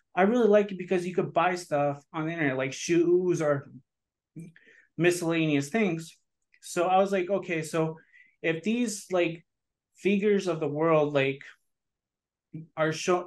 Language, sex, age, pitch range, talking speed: English, male, 30-49, 155-185 Hz, 150 wpm